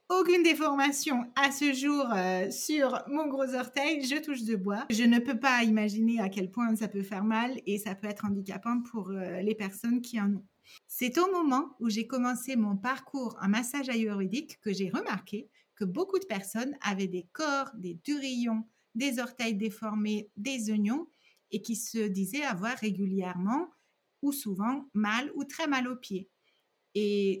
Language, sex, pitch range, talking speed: French, female, 205-270 Hz, 175 wpm